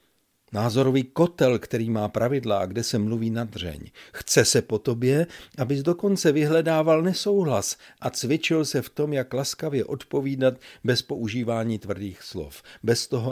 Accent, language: native, Czech